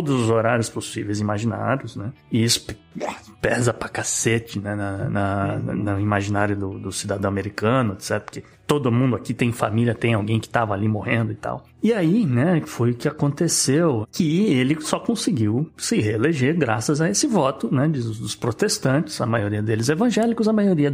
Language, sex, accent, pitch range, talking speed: Portuguese, male, Brazilian, 110-150 Hz, 180 wpm